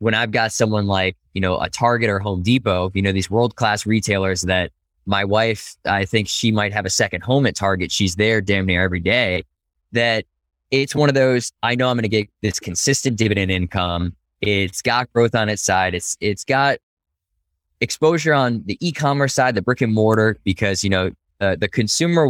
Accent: American